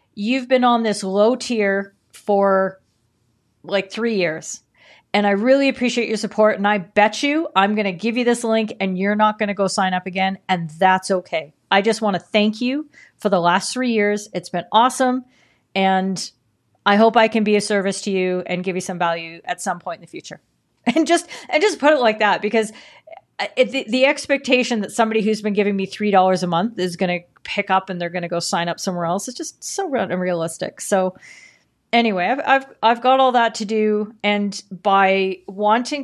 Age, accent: 40-59, American